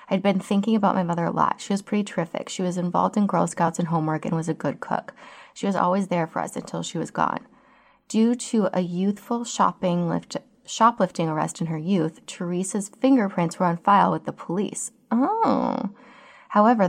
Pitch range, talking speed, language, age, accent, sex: 170-210 Hz, 200 wpm, English, 20-39, American, female